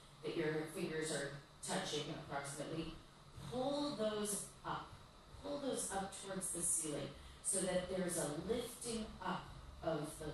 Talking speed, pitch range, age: 135 wpm, 150-200 Hz, 30-49